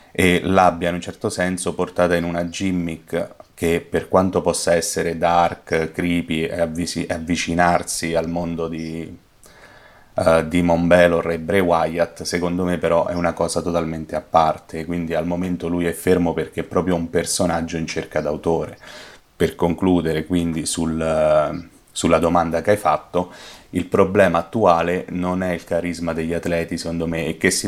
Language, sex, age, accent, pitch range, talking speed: Italian, male, 30-49, native, 80-90 Hz, 165 wpm